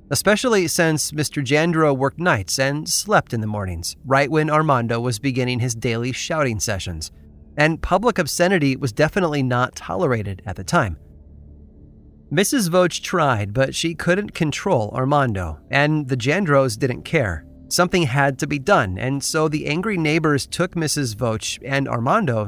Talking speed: 155 wpm